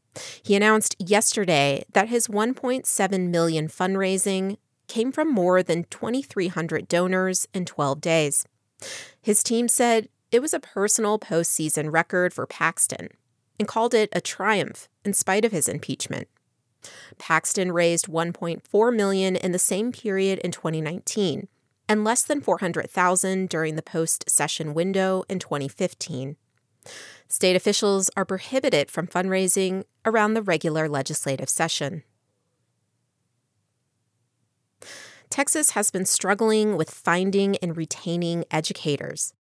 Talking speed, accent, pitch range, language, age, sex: 120 wpm, American, 160-210 Hz, English, 30-49, female